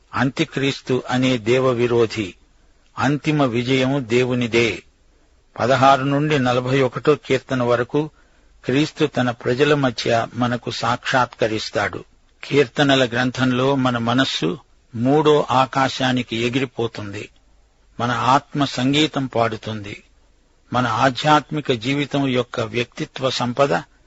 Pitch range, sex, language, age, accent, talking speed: 120-140 Hz, male, Telugu, 50-69, native, 90 wpm